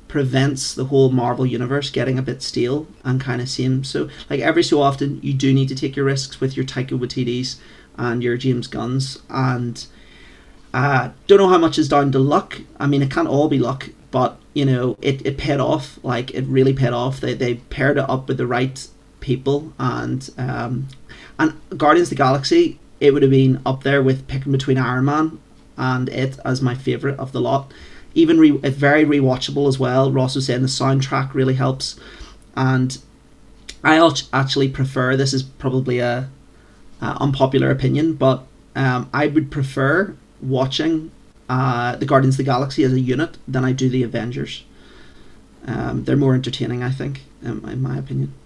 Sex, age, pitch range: male, 30-49, 130-140 Hz